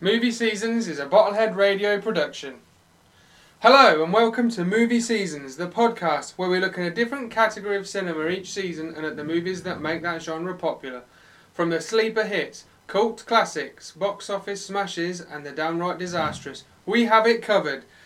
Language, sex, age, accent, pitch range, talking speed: English, male, 30-49, British, 145-200 Hz, 175 wpm